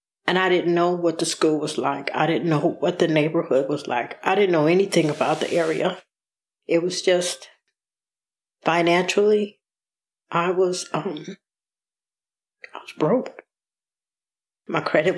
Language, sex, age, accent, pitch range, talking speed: English, female, 60-79, American, 160-180 Hz, 140 wpm